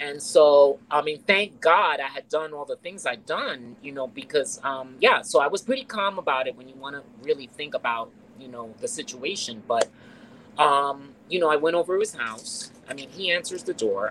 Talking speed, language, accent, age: 225 wpm, English, American, 30-49